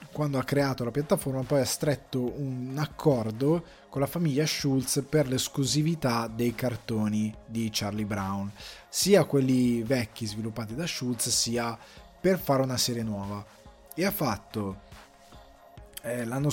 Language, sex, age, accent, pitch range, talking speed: Italian, male, 20-39, native, 110-135 Hz, 135 wpm